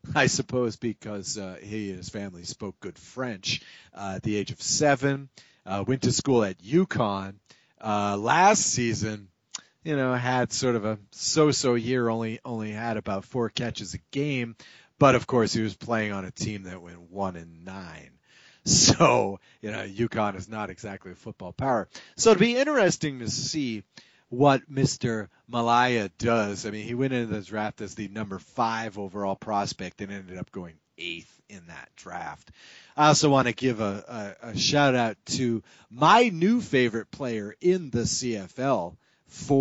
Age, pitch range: 40-59, 105-130 Hz